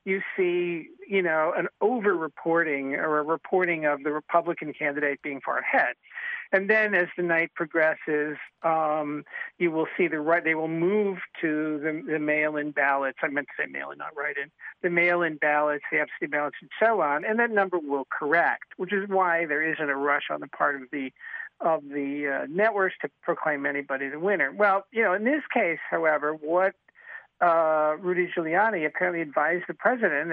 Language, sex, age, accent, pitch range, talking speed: English, male, 50-69, American, 155-195 Hz, 185 wpm